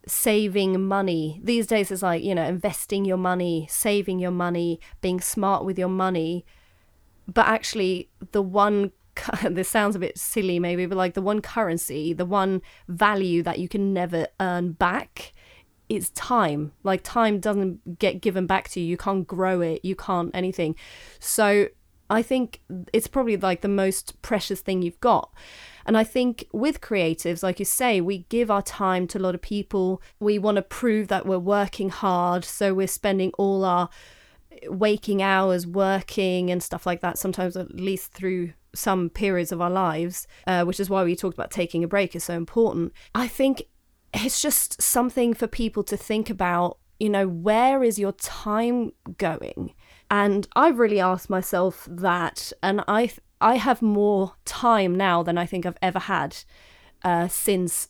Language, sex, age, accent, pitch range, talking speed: English, female, 30-49, British, 175-205 Hz, 175 wpm